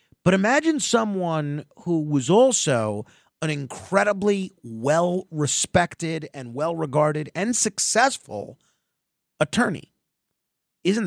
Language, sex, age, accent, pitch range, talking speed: English, male, 40-59, American, 150-205 Hz, 80 wpm